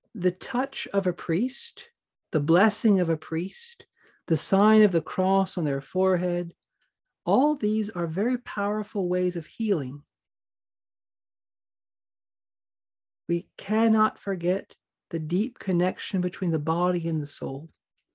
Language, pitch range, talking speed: English, 145-195 Hz, 125 wpm